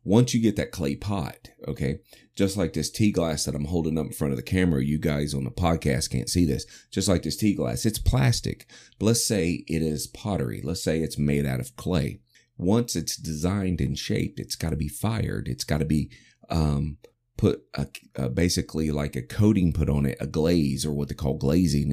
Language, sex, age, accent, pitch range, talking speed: English, male, 30-49, American, 70-95 Hz, 210 wpm